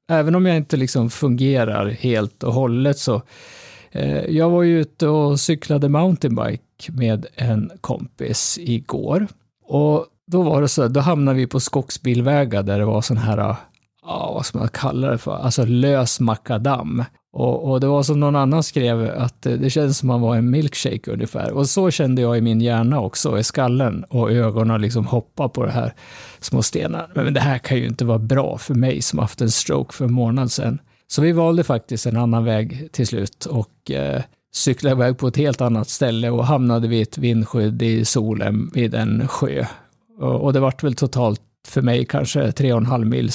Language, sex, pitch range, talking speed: Swedish, male, 115-150 Hz, 195 wpm